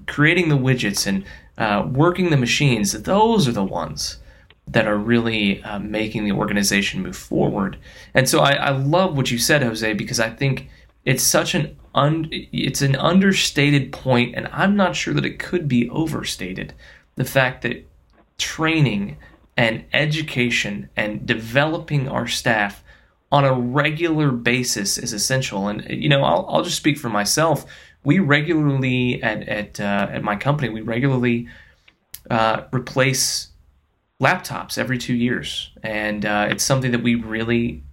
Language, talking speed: English, 155 wpm